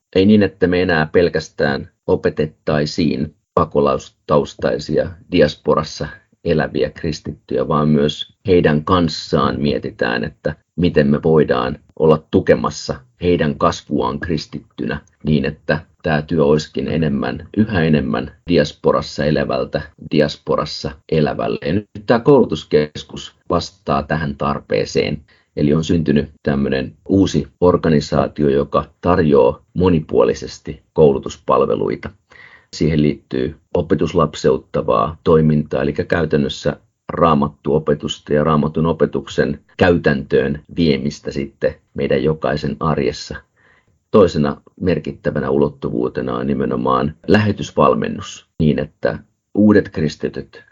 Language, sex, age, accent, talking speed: Finnish, male, 30-49, native, 95 wpm